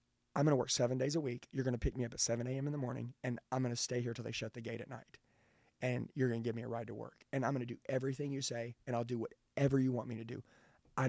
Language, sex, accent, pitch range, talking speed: English, male, American, 125-145 Hz, 330 wpm